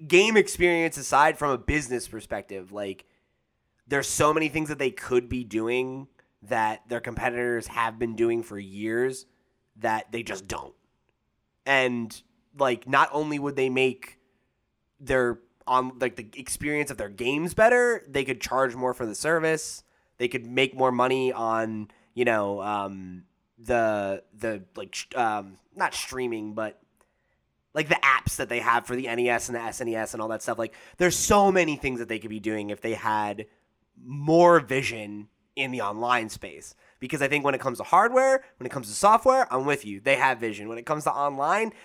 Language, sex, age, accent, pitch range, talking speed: English, male, 20-39, American, 115-150 Hz, 180 wpm